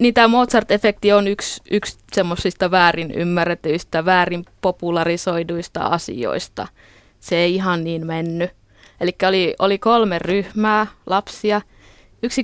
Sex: female